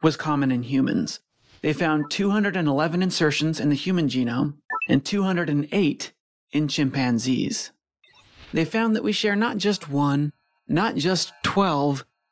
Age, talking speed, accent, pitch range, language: 30-49, 130 wpm, American, 145-185 Hz, English